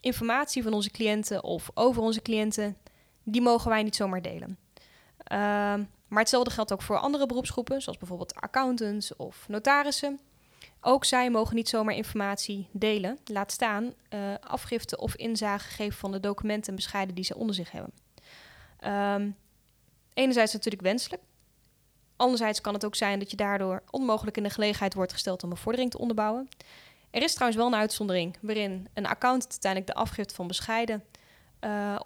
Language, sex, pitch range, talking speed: Dutch, female, 200-245 Hz, 165 wpm